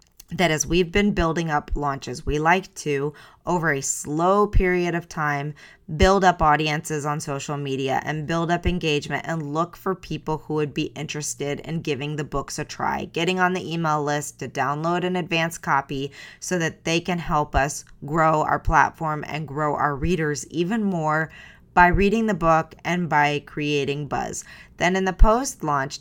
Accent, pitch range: American, 145-175 Hz